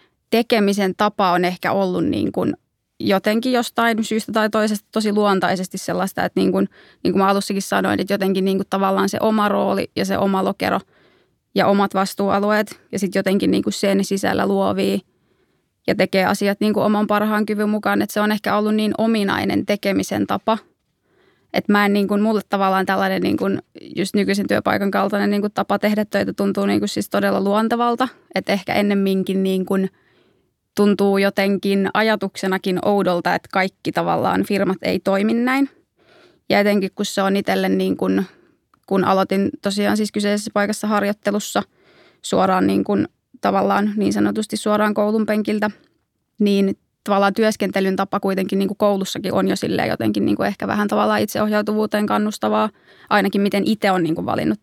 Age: 20-39